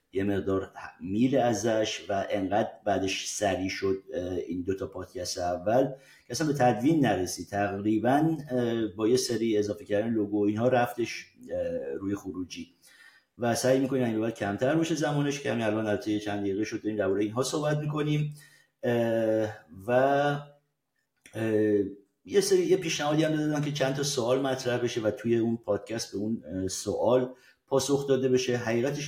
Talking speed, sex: 155 wpm, male